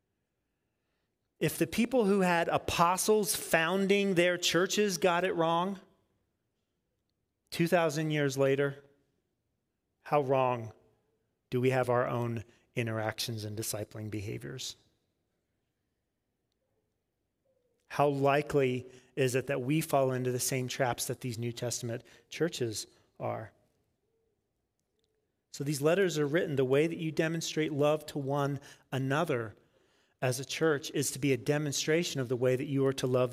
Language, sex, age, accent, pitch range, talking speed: English, male, 30-49, American, 125-165 Hz, 130 wpm